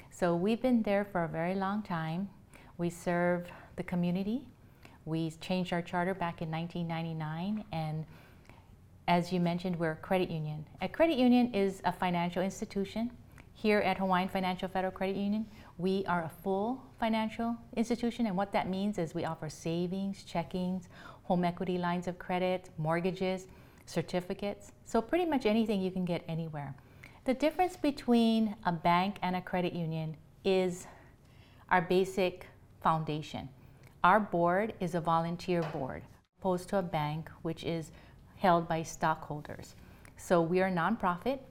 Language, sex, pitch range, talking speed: English, female, 165-195 Hz, 150 wpm